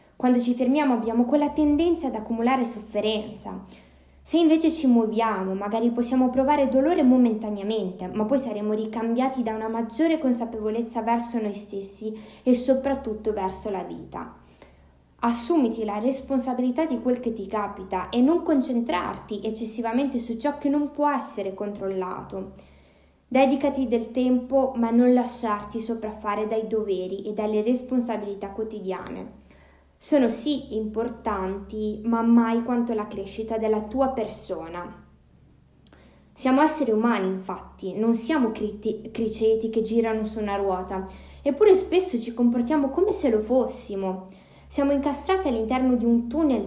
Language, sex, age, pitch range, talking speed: Italian, female, 20-39, 215-265 Hz, 135 wpm